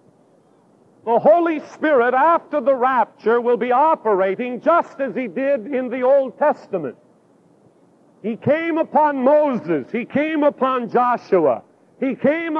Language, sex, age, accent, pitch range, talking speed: English, male, 50-69, American, 240-300 Hz, 130 wpm